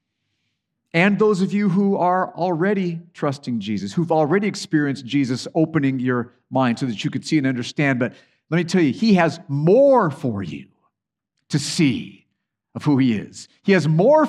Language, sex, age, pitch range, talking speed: English, male, 50-69, 120-180 Hz, 175 wpm